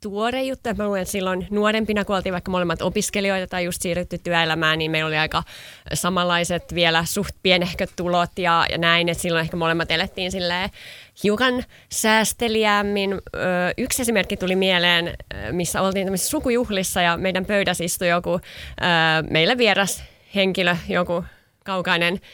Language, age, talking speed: Finnish, 20-39, 130 wpm